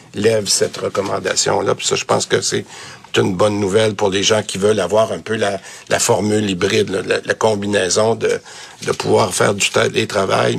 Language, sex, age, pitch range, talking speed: French, male, 60-79, 105-135 Hz, 195 wpm